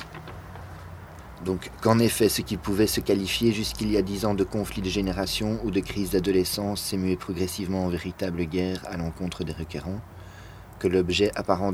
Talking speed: 175 wpm